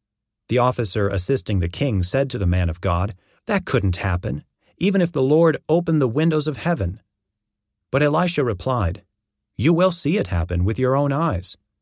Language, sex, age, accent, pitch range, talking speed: English, male, 40-59, American, 100-145 Hz, 180 wpm